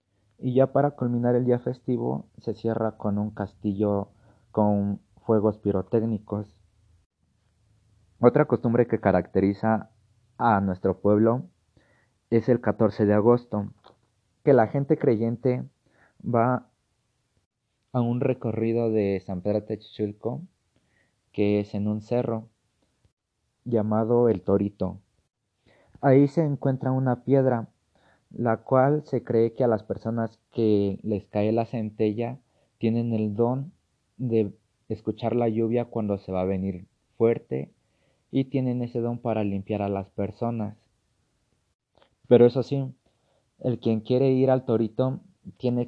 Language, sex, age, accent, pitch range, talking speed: Spanish, male, 30-49, Mexican, 105-120 Hz, 125 wpm